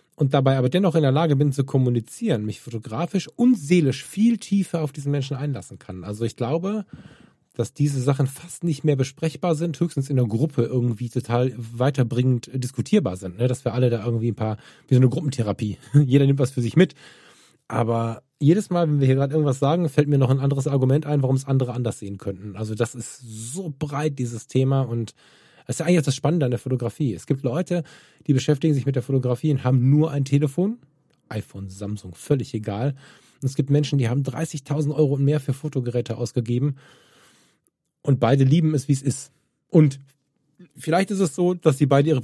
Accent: German